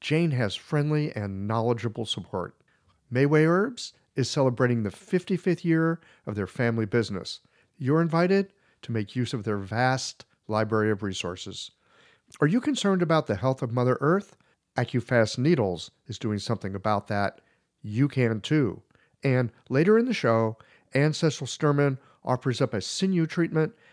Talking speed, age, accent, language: 150 wpm, 50-69, American, English